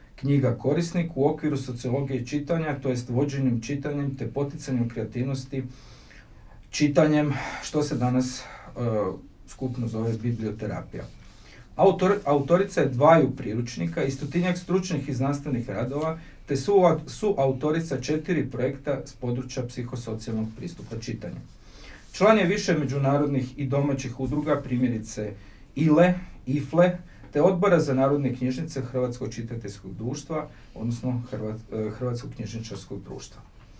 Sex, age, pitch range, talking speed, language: male, 40-59, 120-150 Hz, 115 wpm, Croatian